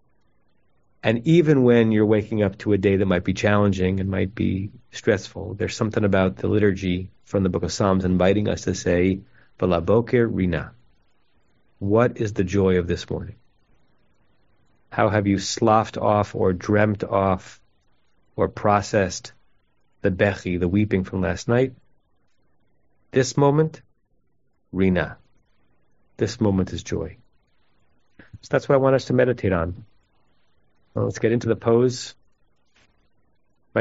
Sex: male